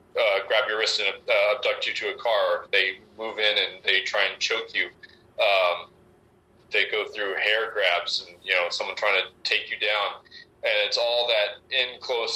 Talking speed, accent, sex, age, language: 200 wpm, American, male, 30-49, English